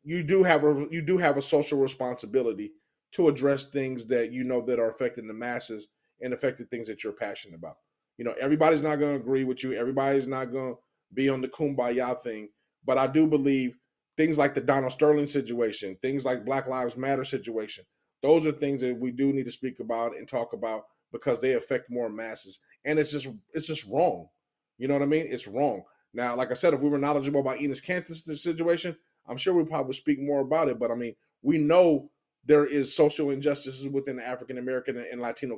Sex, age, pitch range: male, 30-49, 125-155 Hz